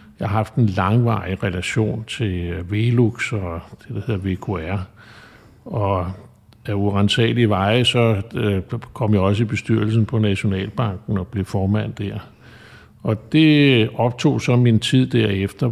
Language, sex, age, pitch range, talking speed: Danish, male, 50-69, 95-115 Hz, 135 wpm